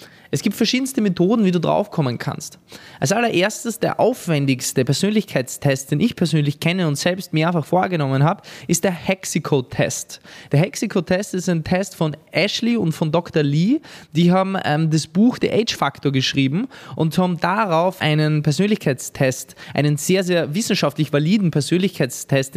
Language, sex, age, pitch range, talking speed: German, male, 20-39, 150-190 Hz, 155 wpm